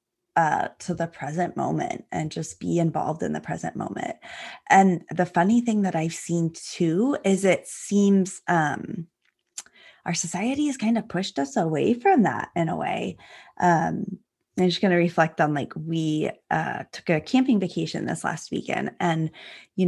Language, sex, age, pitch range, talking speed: English, female, 20-39, 150-180 Hz, 170 wpm